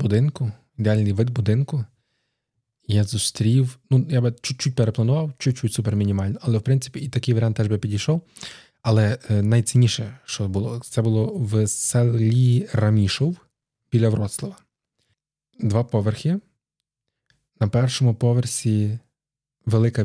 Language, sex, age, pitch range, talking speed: Ukrainian, male, 20-39, 110-130 Hz, 115 wpm